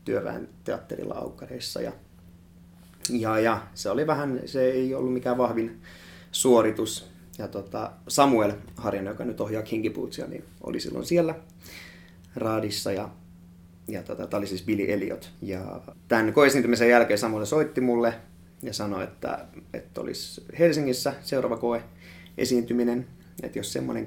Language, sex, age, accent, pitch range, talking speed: Finnish, male, 30-49, native, 90-120 Hz, 130 wpm